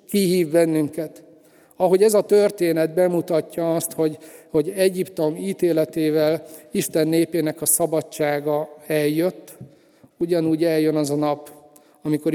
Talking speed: 110 wpm